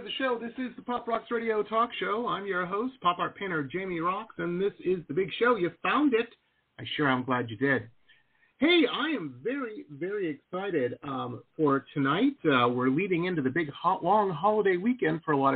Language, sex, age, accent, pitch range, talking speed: English, male, 40-59, American, 145-235 Hz, 210 wpm